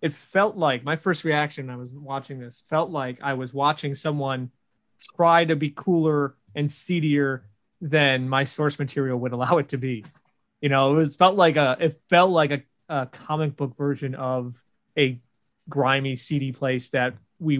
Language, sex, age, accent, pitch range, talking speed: English, male, 30-49, American, 125-155 Hz, 185 wpm